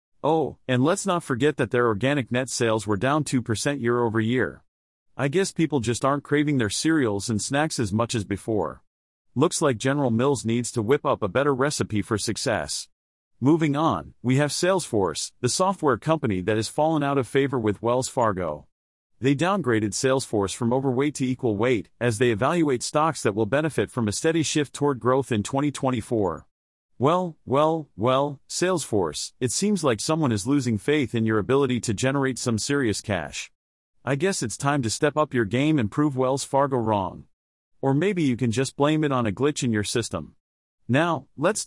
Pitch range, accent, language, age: 110-145 Hz, American, English, 40-59